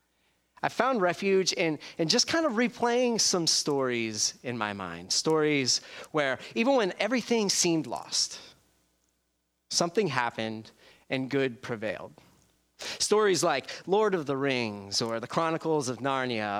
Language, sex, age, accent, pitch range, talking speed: English, male, 30-49, American, 115-180 Hz, 135 wpm